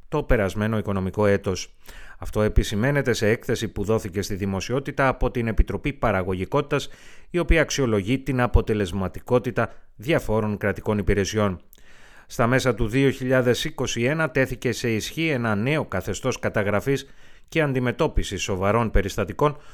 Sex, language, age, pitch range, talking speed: male, Greek, 30-49, 100-130 Hz, 120 wpm